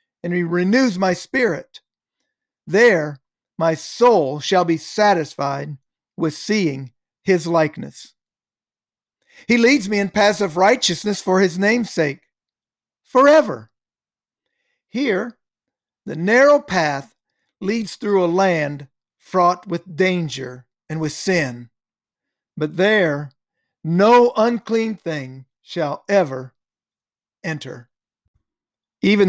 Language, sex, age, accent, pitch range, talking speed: English, male, 50-69, American, 150-205 Hz, 100 wpm